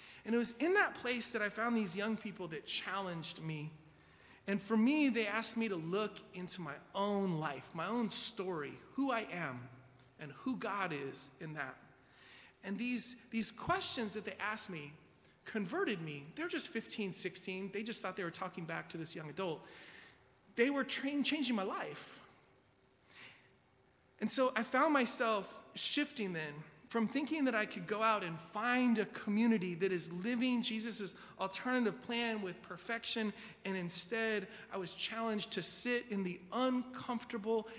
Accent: American